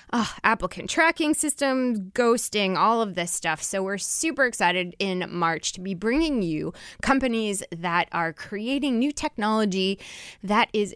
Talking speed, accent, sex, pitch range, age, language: 150 wpm, American, female, 175-240 Hz, 20-39, English